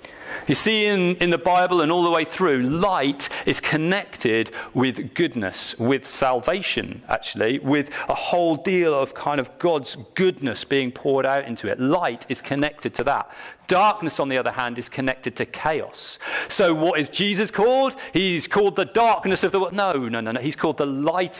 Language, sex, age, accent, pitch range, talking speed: English, male, 40-59, British, 125-175 Hz, 190 wpm